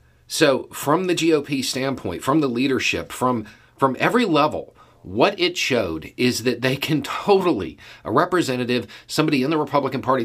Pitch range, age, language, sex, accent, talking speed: 105-130 Hz, 50-69, English, male, American, 160 wpm